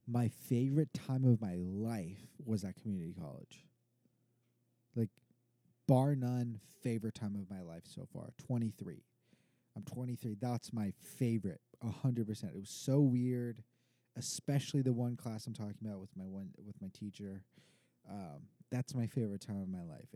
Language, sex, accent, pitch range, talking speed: English, male, American, 110-135 Hz, 165 wpm